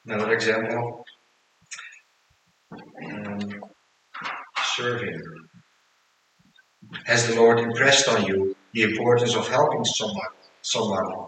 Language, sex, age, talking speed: English, male, 50-69, 85 wpm